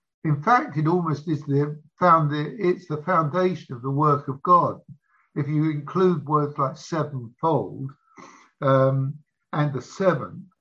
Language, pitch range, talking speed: English, 145-180 Hz, 145 wpm